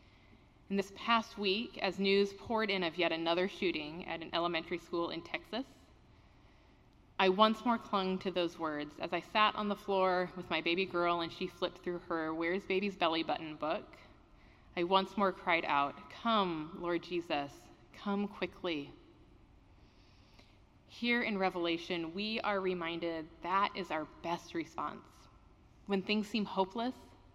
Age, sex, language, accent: 20-39, female, English, American